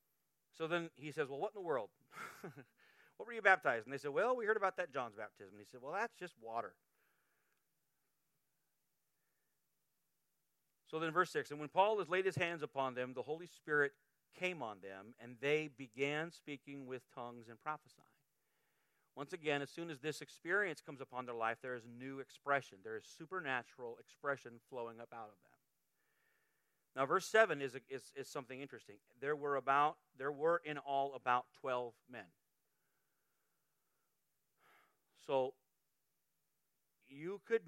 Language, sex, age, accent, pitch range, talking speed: English, male, 40-59, American, 125-170 Hz, 160 wpm